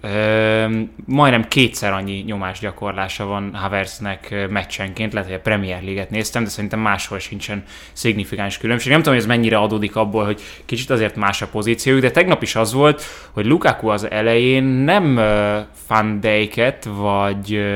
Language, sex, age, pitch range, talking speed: Hungarian, male, 20-39, 100-130 Hz, 155 wpm